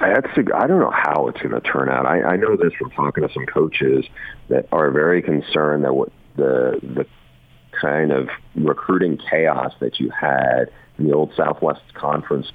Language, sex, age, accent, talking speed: English, male, 50-69, American, 180 wpm